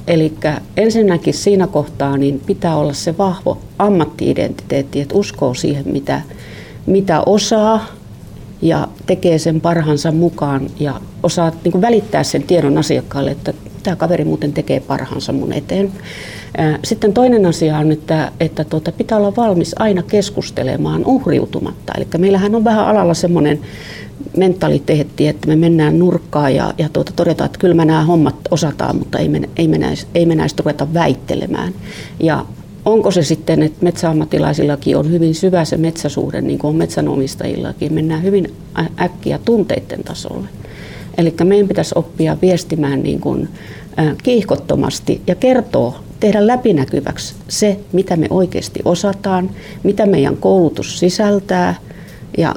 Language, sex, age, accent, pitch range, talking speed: Finnish, female, 40-59, native, 155-195 Hz, 140 wpm